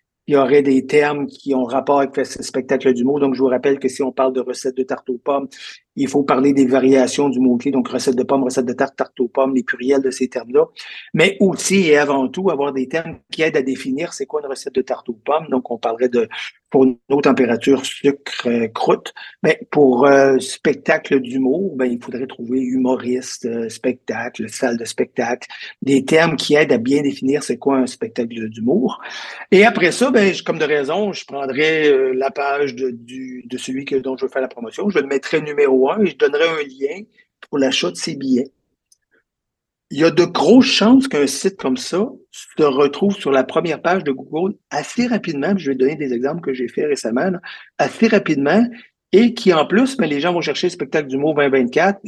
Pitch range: 130-170 Hz